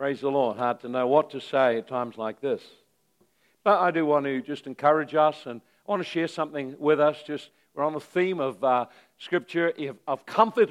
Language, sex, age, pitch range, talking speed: English, male, 60-79, 150-195 Hz, 220 wpm